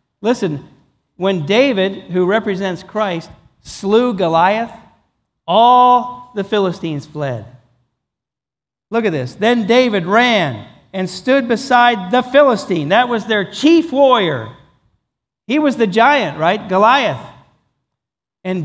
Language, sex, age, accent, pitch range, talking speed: English, male, 50-69, American, 160-260 Hz, 115 wpm